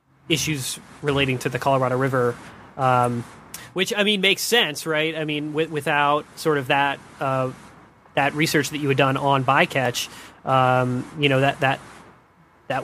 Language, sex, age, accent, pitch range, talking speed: English, male, 30-49, American, 135-160 Hz, 160 wpm